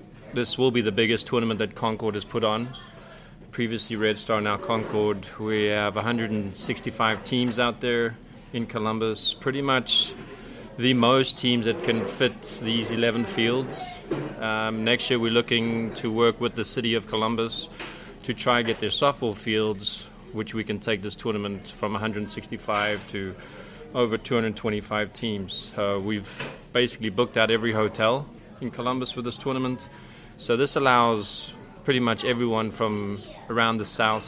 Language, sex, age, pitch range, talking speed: English, male, 30-49, 110-120 Hz, 155 wpm